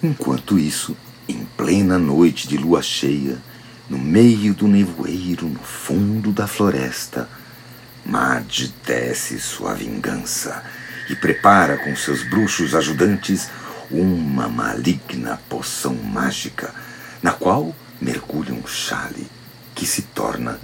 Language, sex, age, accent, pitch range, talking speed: Portuguese, male, 60-79, Brazilian, 85-130 Hz, 110 wpm